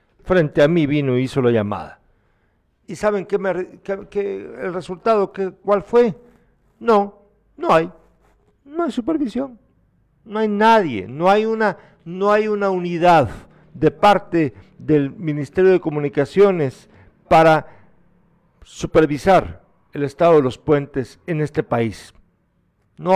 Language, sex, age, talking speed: Spanish, male, 50-69, 130 wpm